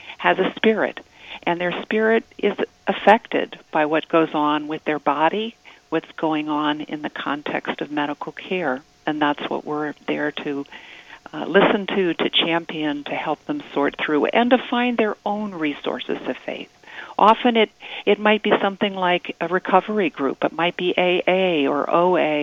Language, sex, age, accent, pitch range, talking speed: English, female, 50-69, American, 150-185 Hz, 170 wpm